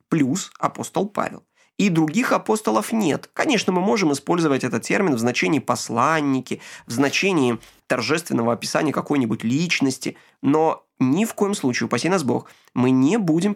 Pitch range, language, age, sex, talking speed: 125-205 Hz, Ukrainian, 20-39, male, 145 wpm